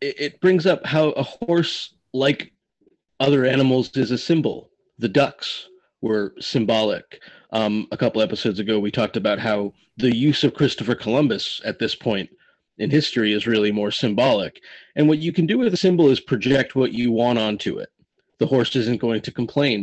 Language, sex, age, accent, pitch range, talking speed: English, male, 30-49, American, 110-150 Hz, 180 wpm